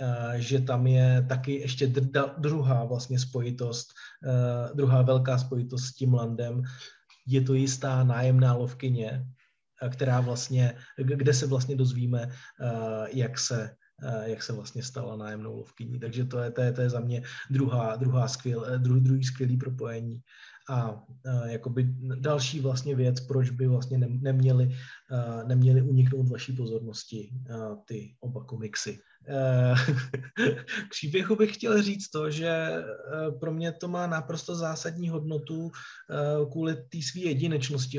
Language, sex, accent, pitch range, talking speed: Czech, male, native, 125-150 Hz, 125 wpm